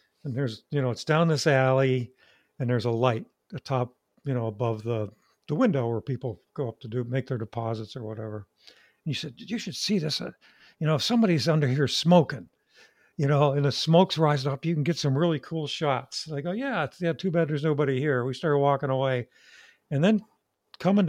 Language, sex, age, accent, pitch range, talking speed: English, male, 60-79, American, 130-175 Hz, 220 wpm